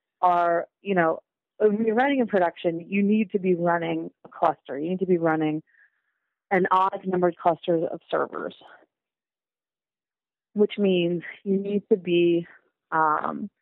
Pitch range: 165-195 Hz